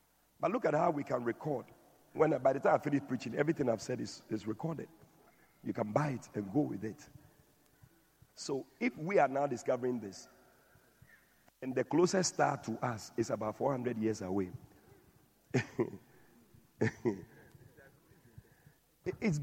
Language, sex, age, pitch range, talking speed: English, male, 50-69, 115-175 Hz, 150 wpm